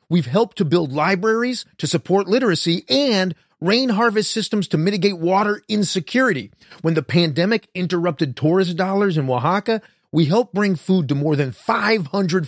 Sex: male